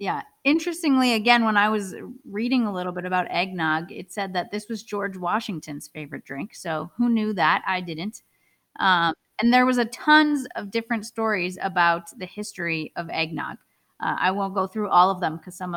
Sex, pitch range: female, 170-220 Hz